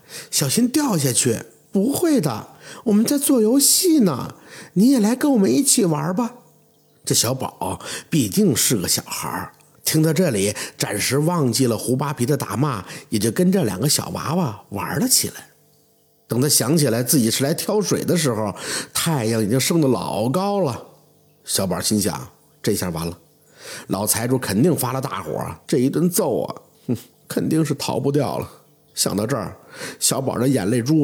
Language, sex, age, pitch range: Chinese, male, 50-69, 130-210 Hz